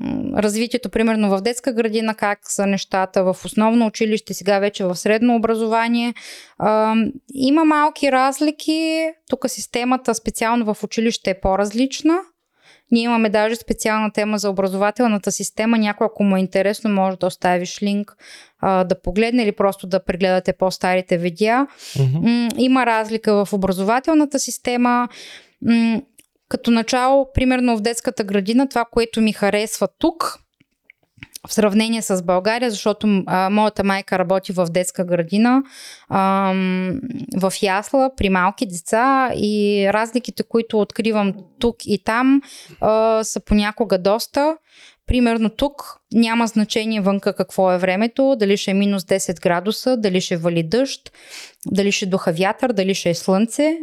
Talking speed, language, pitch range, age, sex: 135 wpm, Bulgarian, 195-245 Hz, 20-39, female